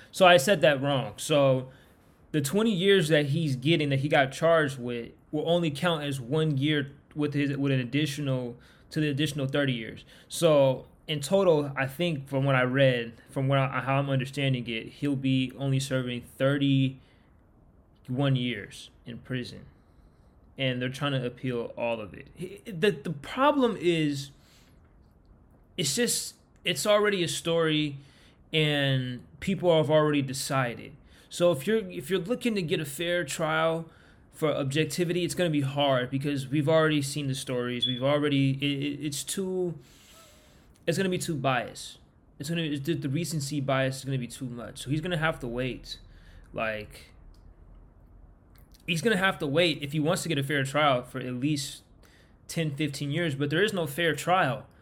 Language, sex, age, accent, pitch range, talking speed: English, male, 20-39, American, 130-160 Hz, 175 wpm